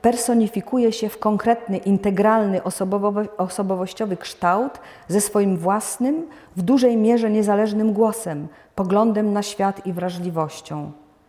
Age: 40-59